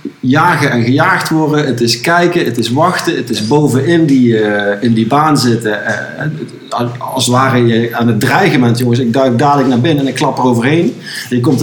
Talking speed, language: 215 wpm, Dutch